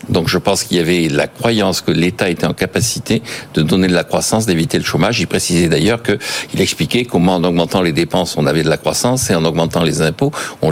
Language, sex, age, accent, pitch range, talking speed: French, male, 60-79, French, 90-130 Hz, 240 wpm